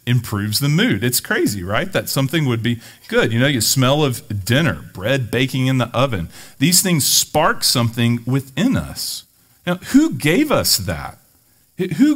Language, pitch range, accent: English, 95-130 Hz, American